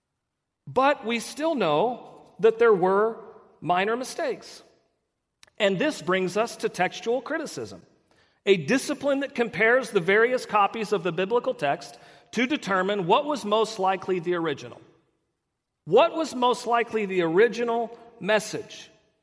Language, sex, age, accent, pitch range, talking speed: English, male, 40-59, American, 175-240 Hz, 130 wpm